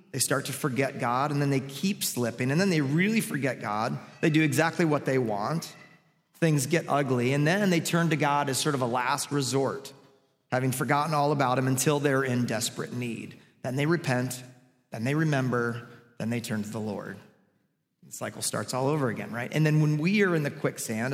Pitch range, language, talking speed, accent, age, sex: 125-155 Hz, English, 210 wpm, American, 30-49, male